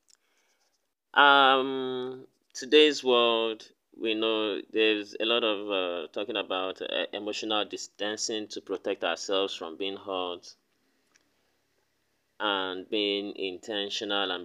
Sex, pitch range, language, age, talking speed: male, 100-130 Hz, English, 30-49, 105 wpm